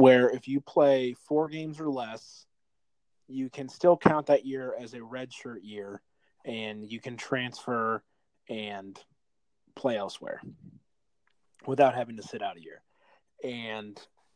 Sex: male